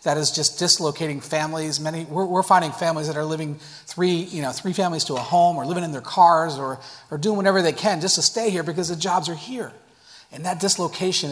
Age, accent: 40-59, American